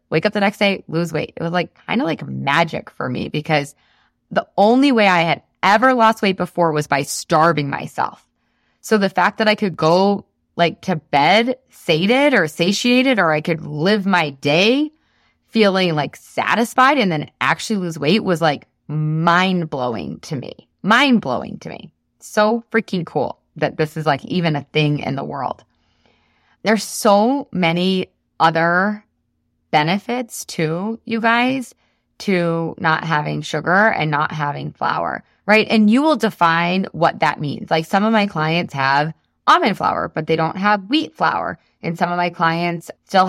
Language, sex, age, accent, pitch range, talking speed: English, female, 20-39, American, 160-215 Hz, 170 wpm